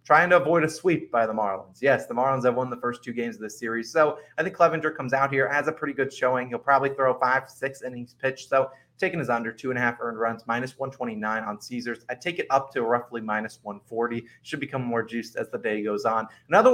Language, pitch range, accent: English, 115-140 Hz, American